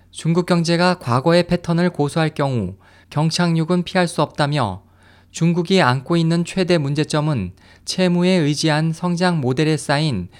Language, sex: Korean, male